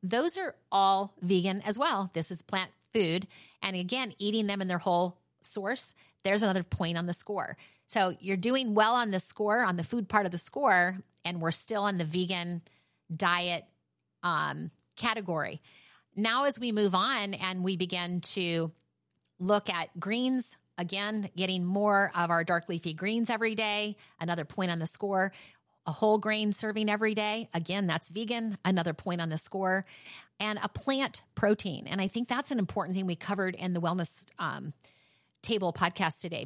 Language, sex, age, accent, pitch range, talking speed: English, female, 30-49, American, 175-215 Hz, 180 wpm